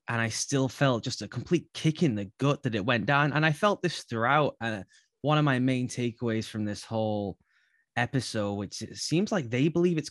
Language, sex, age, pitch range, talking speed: English, male, 20-39, 105-130 Hz, 220 wpm